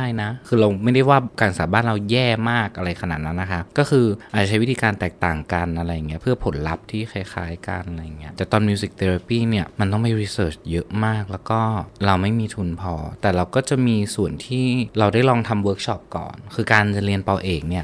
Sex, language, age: male, Thai, 20-39